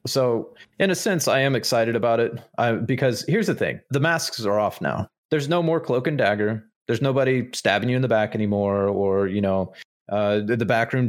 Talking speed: 210 wpm